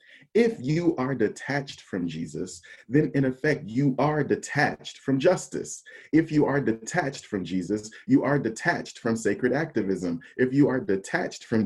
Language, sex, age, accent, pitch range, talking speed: English, male, 30-49, American, 105-140 Hz, 160 wpm